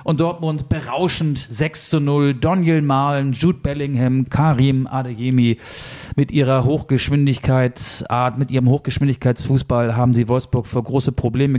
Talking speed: 125 wpm